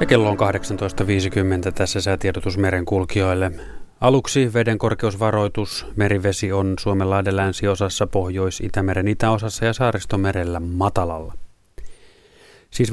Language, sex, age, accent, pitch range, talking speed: Finnish, male, 30-49, native, 95-110 Hz, 85 wpm